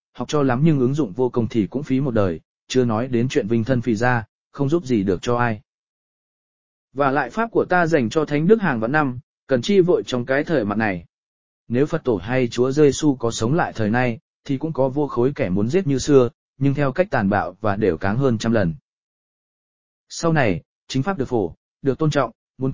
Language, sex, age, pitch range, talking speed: English, male, 20-39, 115-150 Hz, 235 wpm